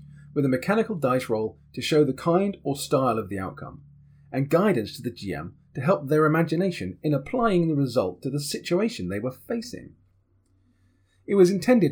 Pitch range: 115-185 Hz